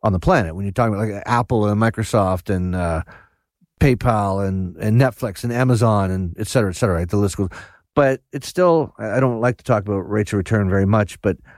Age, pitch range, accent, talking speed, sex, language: 40-59, 105-130 Hz, American, 225 wpm, male, English